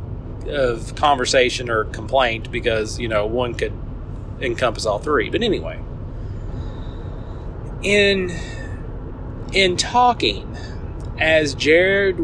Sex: male